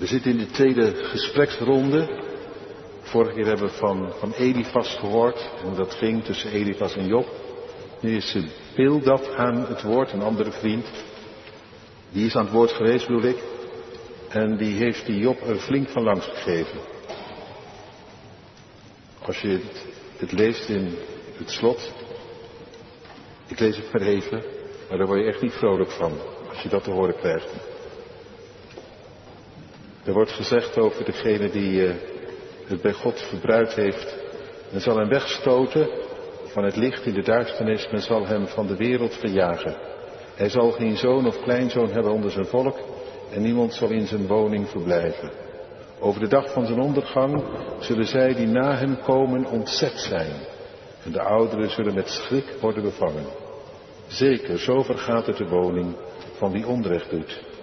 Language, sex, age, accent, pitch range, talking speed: Dutch, male, 60-79, Dutch, 105-135 Hz, 160 wpm